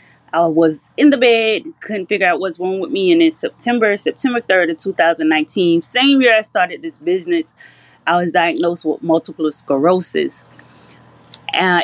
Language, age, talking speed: English, 20-39, 160 wpm